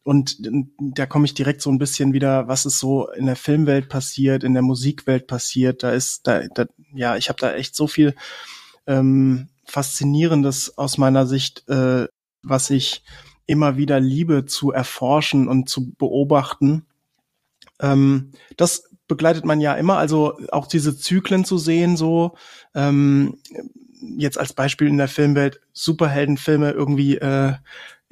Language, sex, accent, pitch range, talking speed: German, male, German, 135-150 Hz, 150 wpm